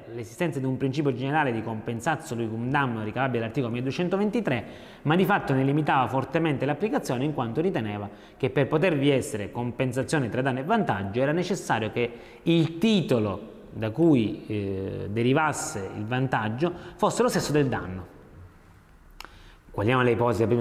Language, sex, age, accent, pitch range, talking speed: Italian, male, 30-49, native, 115-165 Hz, 150 wpm